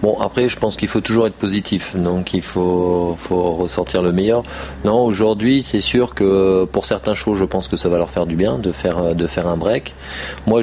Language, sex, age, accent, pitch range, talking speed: French, male, 30-49, French, 85-100 Hz, 225 wpm